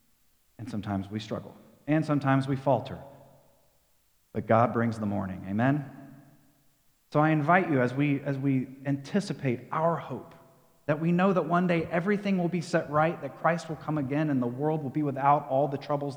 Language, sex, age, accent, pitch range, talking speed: English, male, 30-49, American, 110-140 Hz, 185 wpm